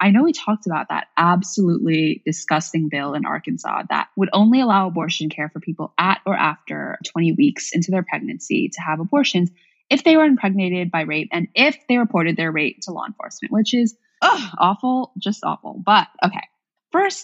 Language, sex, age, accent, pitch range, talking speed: English, female, 20-39, American, 165-230 Hz, 185 wpm